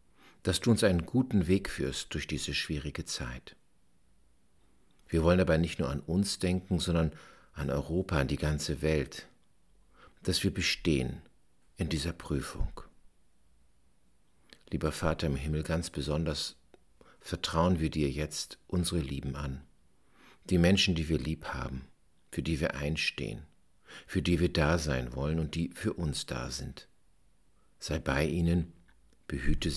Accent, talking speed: German, 145 wpm